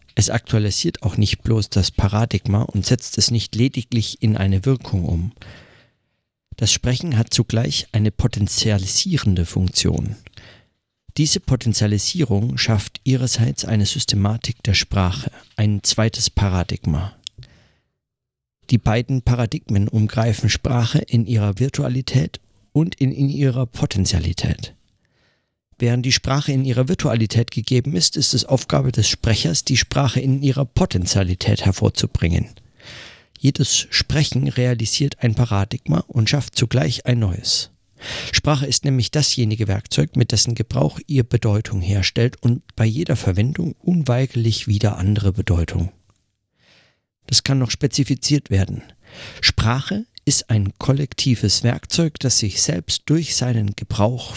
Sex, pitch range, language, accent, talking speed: male, 105-130 Hz, German, German, 120 wpm